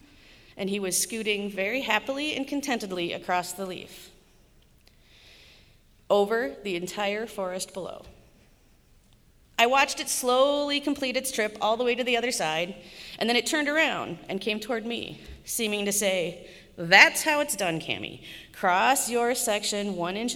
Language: English